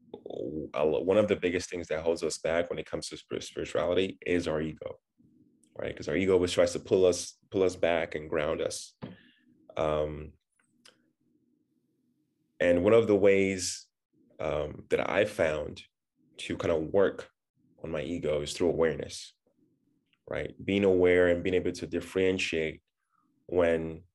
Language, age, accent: English, 20-39, American